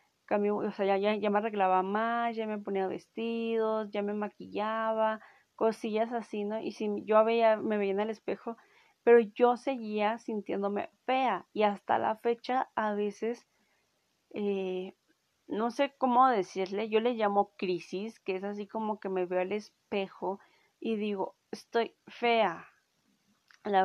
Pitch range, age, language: 205-235 Hz, 20-39, Spanish